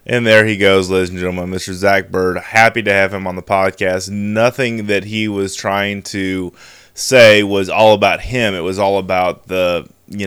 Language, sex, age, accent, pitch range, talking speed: English, male, 20-39, American, 90-105 Hz, 200 wpm